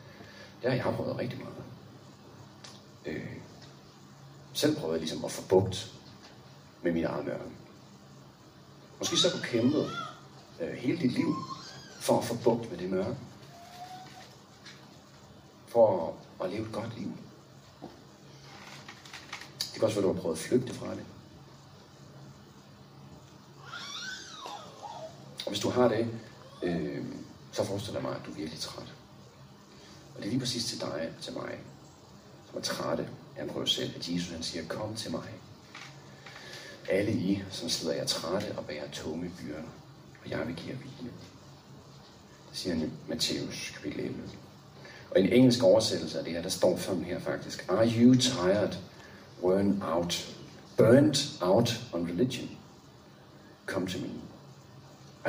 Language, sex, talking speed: Danish, male, 150 wpm